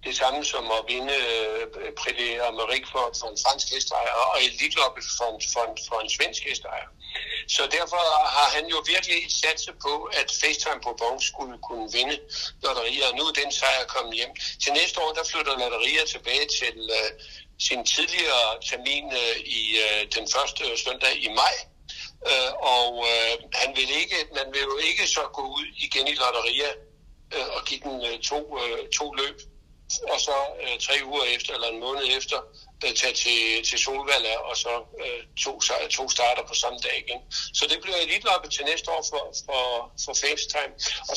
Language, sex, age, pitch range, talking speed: Danish, male, 60-79, 120-180 Hz, 185 wpm